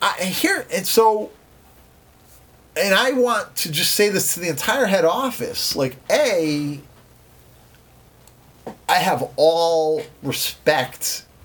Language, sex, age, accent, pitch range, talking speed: English, male, 30-49, American, 120-175 Hz, 115 wpm